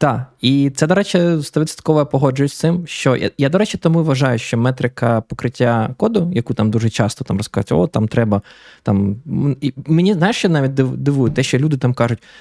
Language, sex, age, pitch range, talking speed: Ukrainian, male, 20-39, 110-135 Hz, 200 wpm